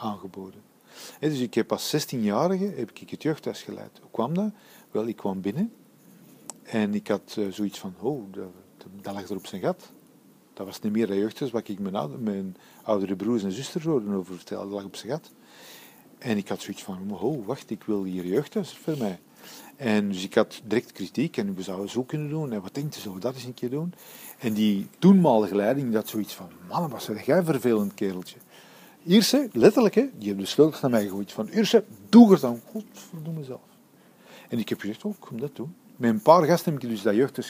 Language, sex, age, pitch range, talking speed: Dutch, male, 40-59, 105-155 Hz, 220 wpm